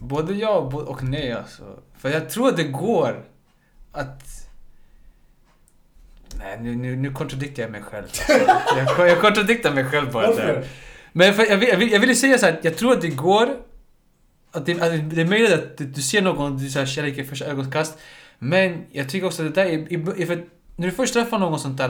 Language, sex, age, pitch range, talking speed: Swedish, male, 20-39, 135-170 Hz, 210 wpm